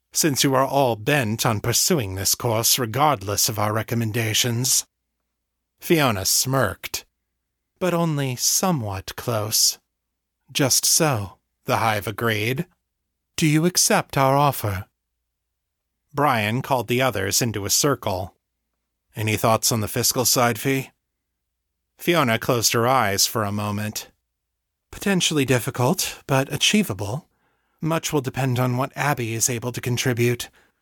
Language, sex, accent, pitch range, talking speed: English, male, American, 105-140 Hz, 125 wpm